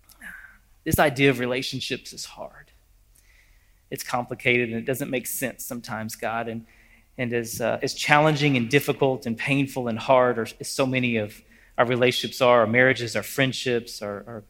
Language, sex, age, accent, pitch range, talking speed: English, male, 30-49, American, 105-135 Hz, 160 wpm